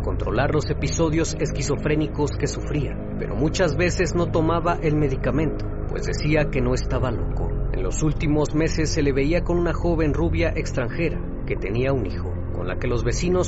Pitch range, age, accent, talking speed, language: 105-155 Hz, 40-59, Mexican, 180 wpm, Spanish